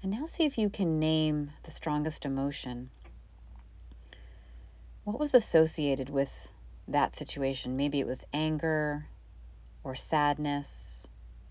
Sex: female